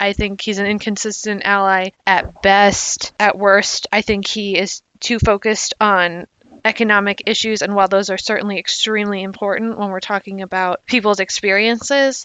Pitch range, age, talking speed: 185-210 Hz, 20-39, 155 wpm